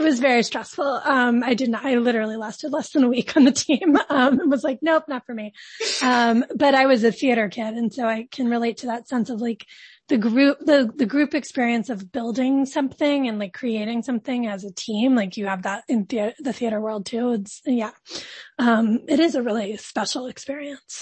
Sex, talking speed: female, 220 wpm